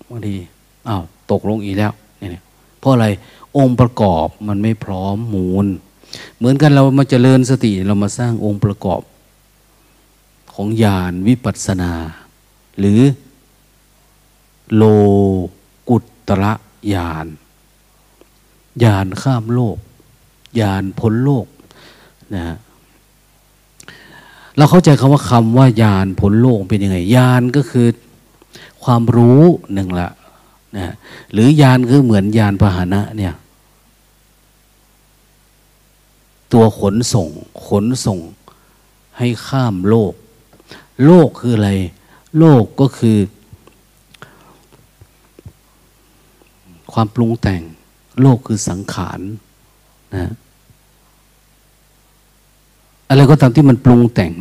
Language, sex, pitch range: Thai, male, 100-125 Hz